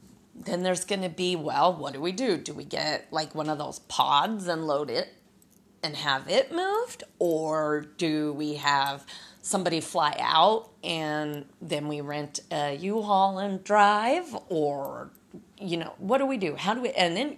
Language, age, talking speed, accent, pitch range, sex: English, 30-49, 180 wpm, American, 170-215 Hz, female